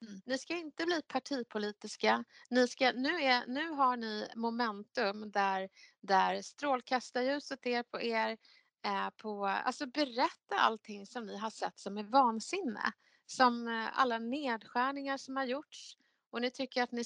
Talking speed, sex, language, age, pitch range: 155 wpm, female, Swedish, 30-49, 205-260 Hz